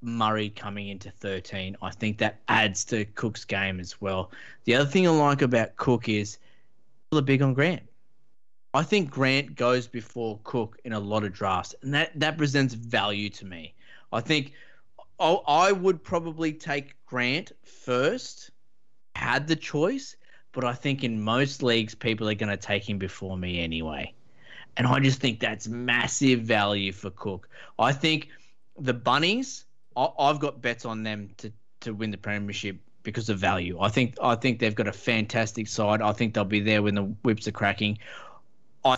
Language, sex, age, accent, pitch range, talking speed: English, male, 20-39, Australian, 105-135 Hz, 180 wpm